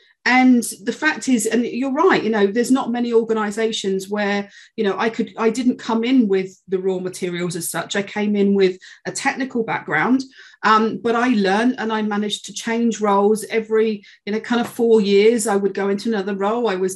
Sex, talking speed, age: female, 210 wpm, 40-59